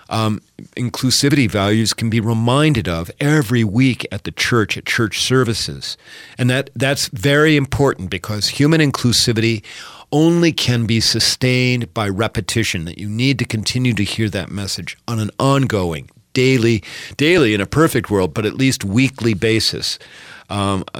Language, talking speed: English, 150 wpm